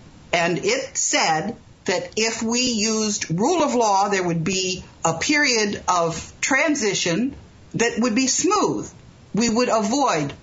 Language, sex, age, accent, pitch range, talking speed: English, female, 50-69, American, 185-260 Hz, 140 wpm